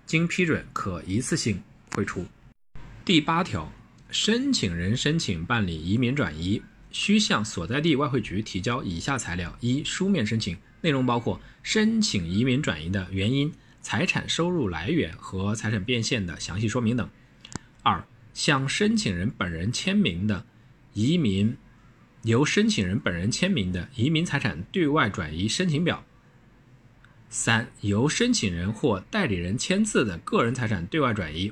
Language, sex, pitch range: Chinese, male, 100-155 Hz